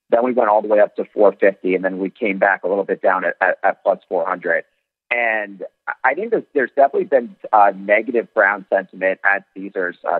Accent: American